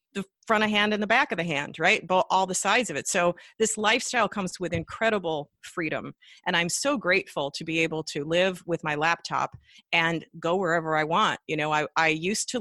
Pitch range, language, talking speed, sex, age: 150-195 Hz, English, 220 wpm, female, 40-59